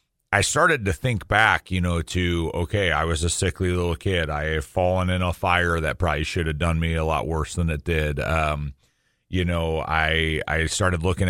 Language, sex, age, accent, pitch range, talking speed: English, male, 30-49, American, 80-95 Hz, 210 wpm